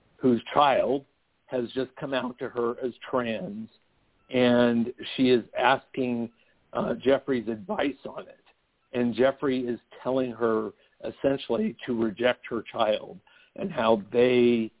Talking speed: 130 wpm